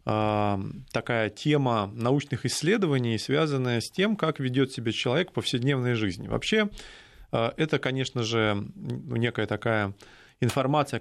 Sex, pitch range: male, 110-140 Hz